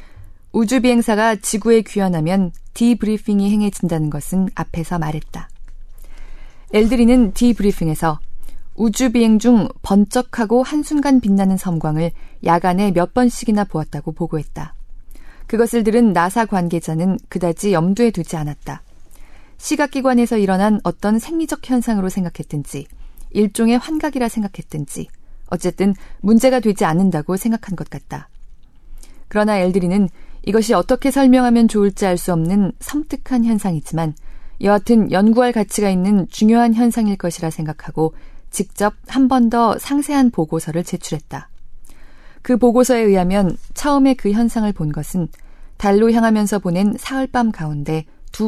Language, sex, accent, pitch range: Korean, female, native, 170-235 Hz